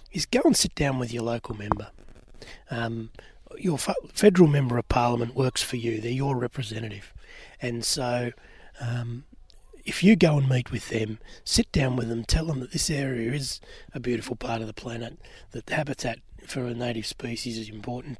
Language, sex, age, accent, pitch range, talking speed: English, male, 30-49, Australian, 115-130 Hz, 185 wpm